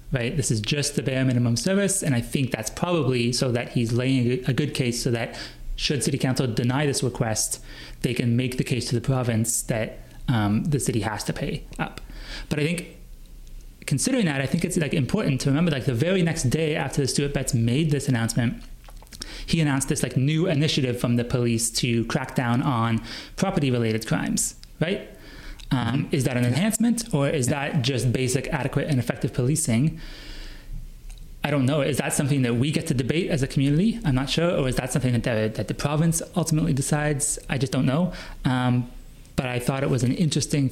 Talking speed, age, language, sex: 205 wpm, 30-49, English, male